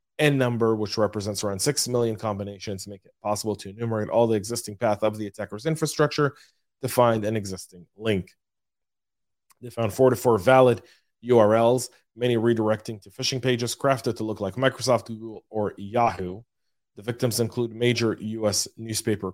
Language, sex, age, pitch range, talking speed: English, male, 30-49, 100-120 Hz, 160 wpm